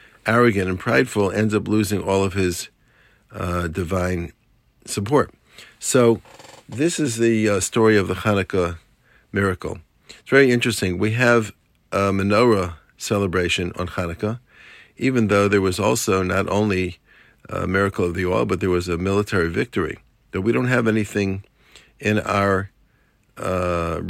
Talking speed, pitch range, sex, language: 140 wpm, 90-110 Hz, male, English